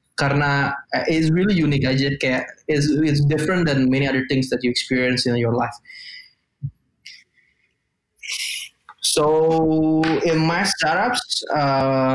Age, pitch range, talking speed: 20-39, 130-155 Hz, 115 wpm